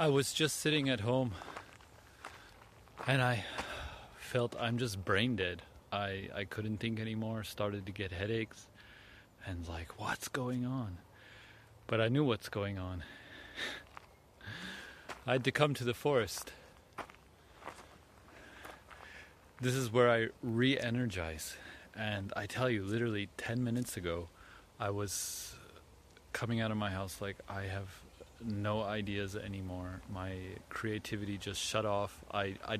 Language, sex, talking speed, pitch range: English, male, 135 wpm, 95-120 Hz